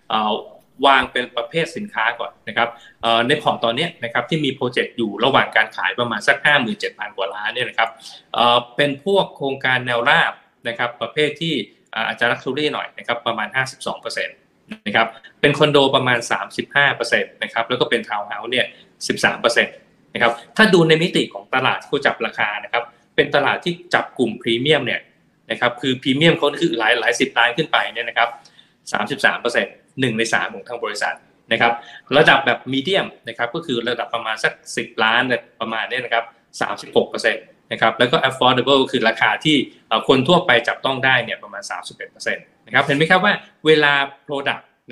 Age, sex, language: 20-39, male, Thai